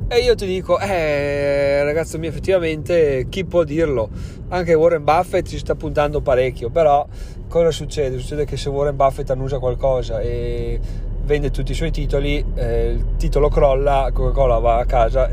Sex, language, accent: male, Italian, native